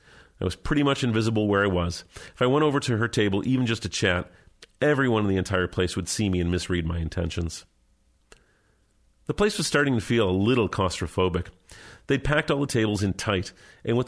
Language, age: English, 40-59